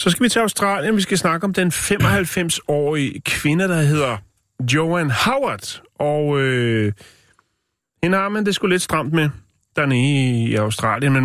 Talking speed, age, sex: 160 wpm, 30-49, male